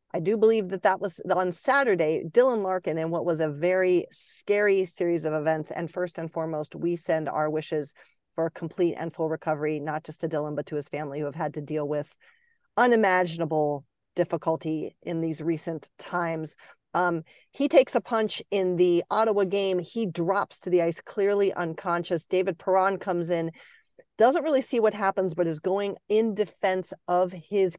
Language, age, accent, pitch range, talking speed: English, 40-59, American, 170-215 Hz, 185 wpm